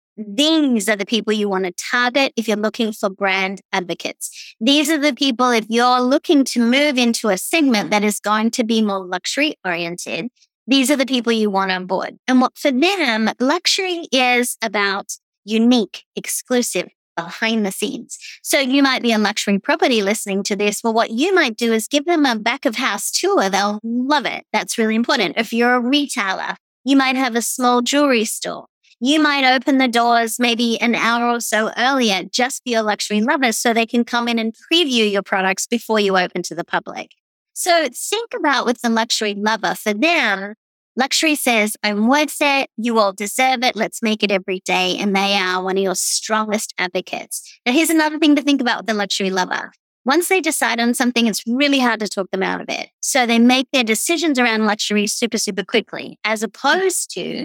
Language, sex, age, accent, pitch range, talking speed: English, female, 30-49, American, 210-270 Hz, 205 wpm